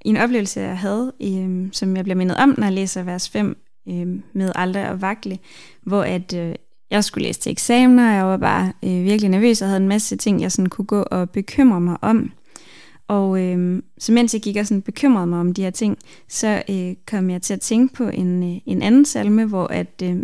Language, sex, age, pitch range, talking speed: Danish, female, 20-39, 185-225 Hz, 230 wpm